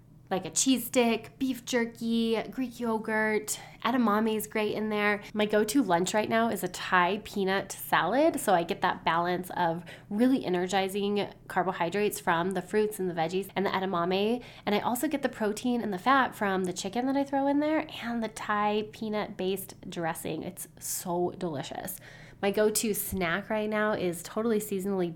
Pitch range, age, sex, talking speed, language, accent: 185-245 Hz, 20-39, female, 175 wpm, English, American